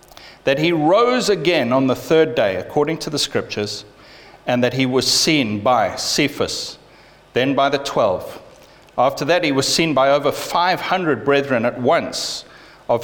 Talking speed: 160 wpm